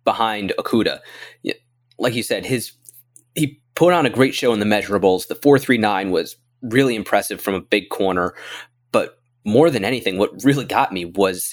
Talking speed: 170 wpm